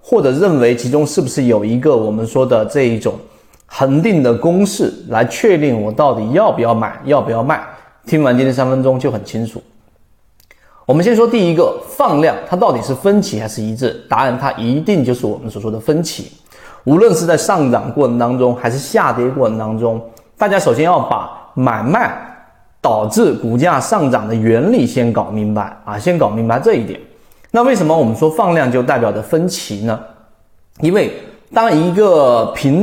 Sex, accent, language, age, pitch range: male, native, Chinese, 30-49, 115-175 Hz